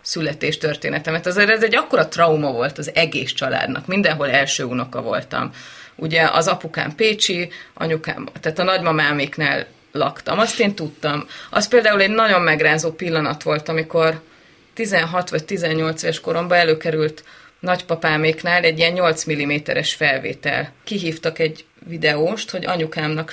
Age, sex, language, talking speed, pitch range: 30-49, female, Hungarian, 130 wpm, 155-180 Hz